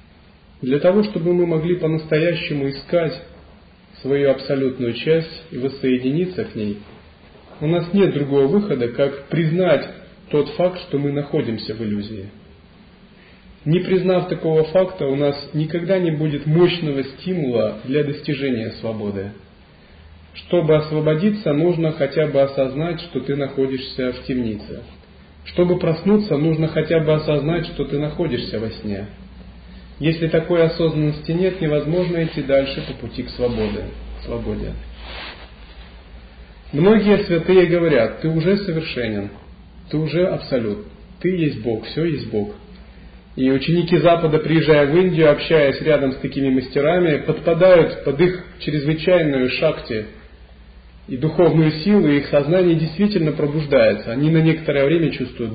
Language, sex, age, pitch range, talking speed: Russian, male, 40-59, 115-165 Hz, 130 wpm